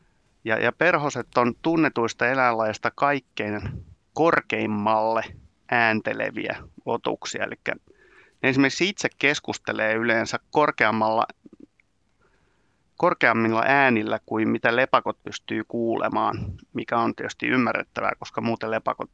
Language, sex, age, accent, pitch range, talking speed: Finnish, male, 30-49, native, 110-125 Hz, 95 wpm